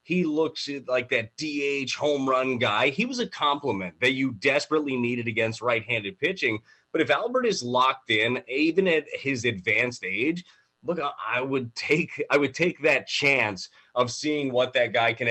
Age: 30-49